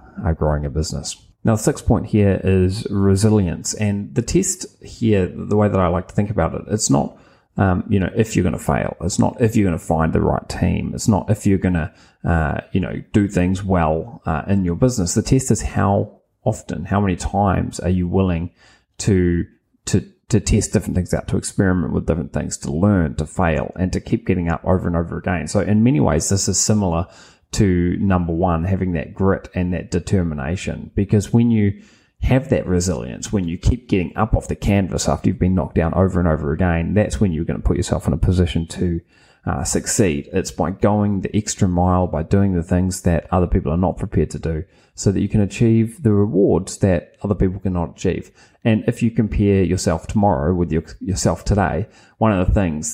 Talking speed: 215 wpm